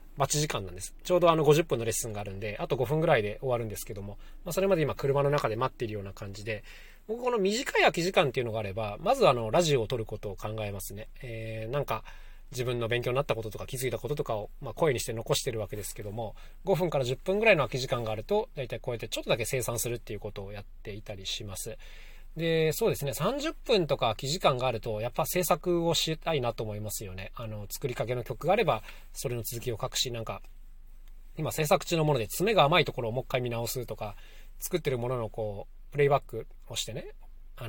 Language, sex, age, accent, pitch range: Japanese, male, 20-39, native, 110-145 Hz